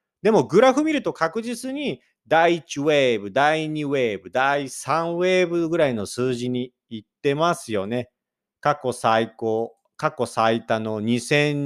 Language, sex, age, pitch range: Japanese, male, 40-59, 115-175 Hz